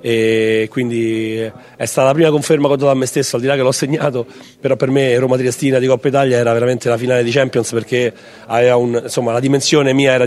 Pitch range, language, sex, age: 120-135 Hz, Italian, male, 40-59